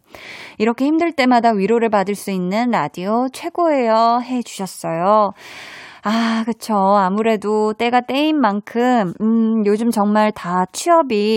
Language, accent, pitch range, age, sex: Korean, native, 200-265 Hz, 20-39, female